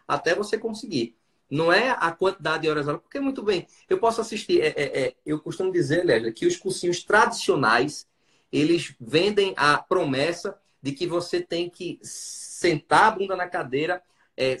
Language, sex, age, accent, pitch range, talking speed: Portuguese, male, 20-39, Brazilian, 160-215 Hz, 175 wpm